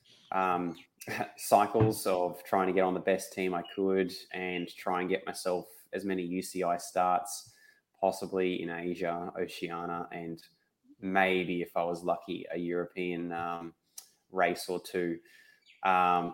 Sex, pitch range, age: male, 90-100 Hz, 20-39